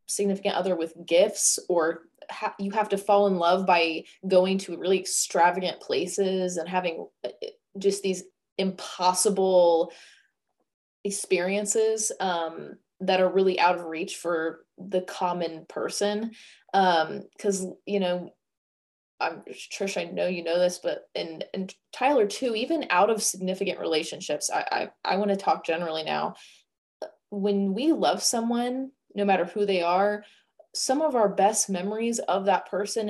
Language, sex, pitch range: English, female, 180-220 Hz